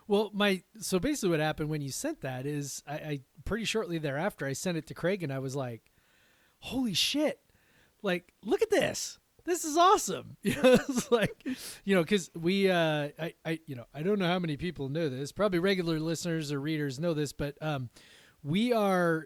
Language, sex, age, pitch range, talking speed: English, male, 30-49, 145-195 Hz, 205 wpm